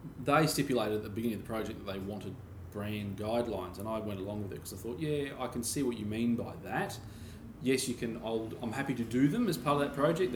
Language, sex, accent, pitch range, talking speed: English, male, Australian, 105-125 Hz, 260 wpm